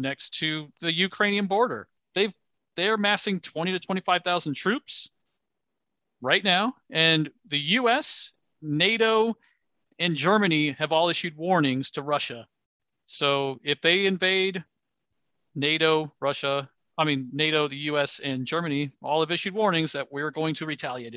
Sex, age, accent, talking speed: male, 40-59, American, 135 wpm